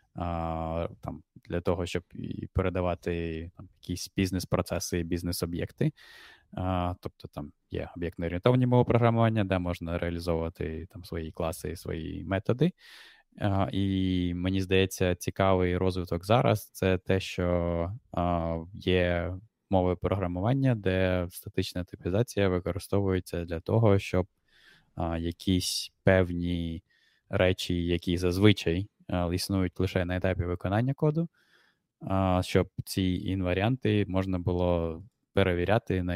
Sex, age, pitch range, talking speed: male, 20-39, 85-100 Hz, 110 wpm